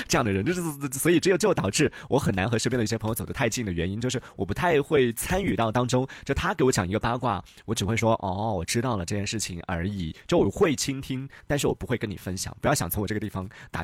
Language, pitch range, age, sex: Chinese, 100-140 Hz, 30-49, male